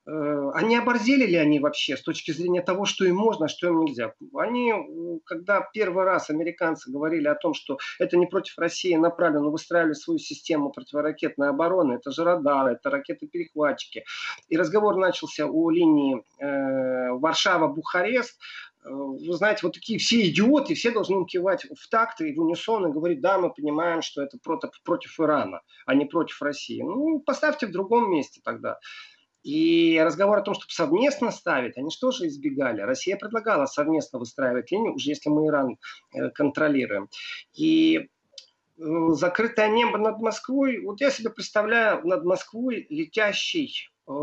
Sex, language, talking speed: male, Russian, 155 wpm